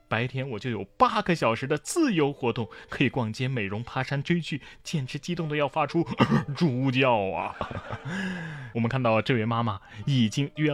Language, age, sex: Chinese, 20-39, male